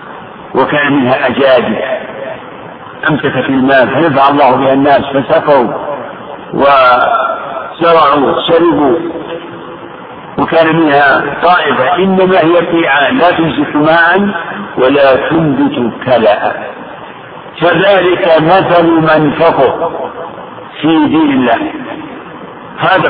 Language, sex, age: Arabic, male, 60-79